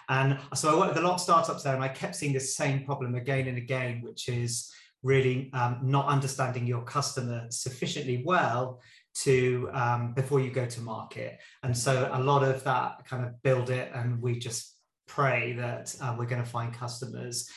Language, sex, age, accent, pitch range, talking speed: English, male, 30-49, British, 125-140 Hz, 200 wpm